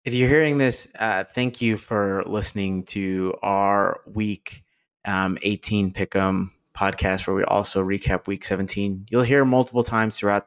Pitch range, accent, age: 95-105 Hz, American, 20-39